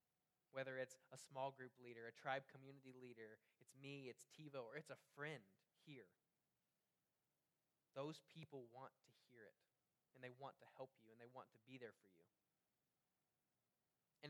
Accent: American